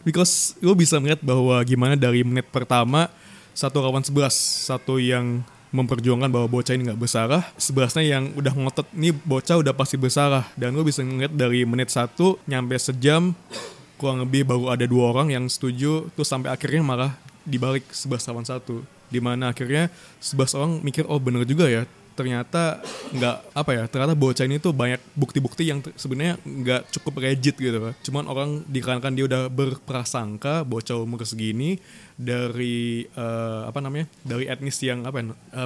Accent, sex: native, male